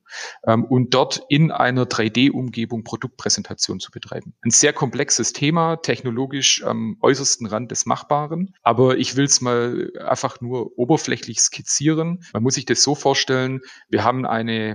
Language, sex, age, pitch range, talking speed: German, male, 40-59, 115-140 Hz, 145 wpm